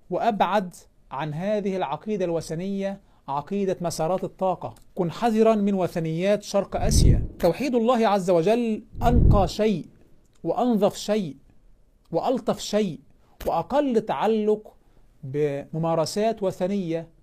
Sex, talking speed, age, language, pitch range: male, 100 wpm, 50-69, Arabic, 165-215 Hz